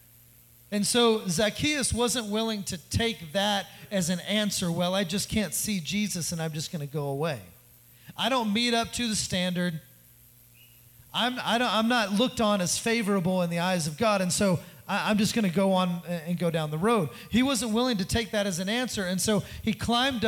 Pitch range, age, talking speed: 135-215 Hz, 30-49, 215 wpm